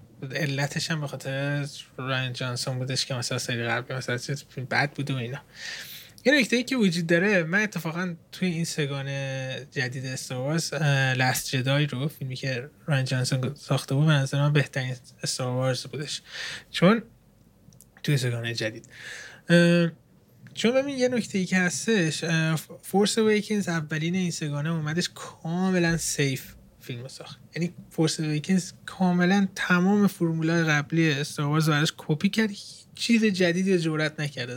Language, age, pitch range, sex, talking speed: Persian, 20-39, 130-165 Hz, male, 130 wpm